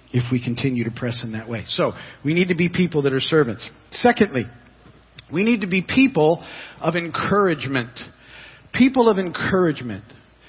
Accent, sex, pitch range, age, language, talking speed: American, male, 135-185 Hz, 50-69, English, 160 wpm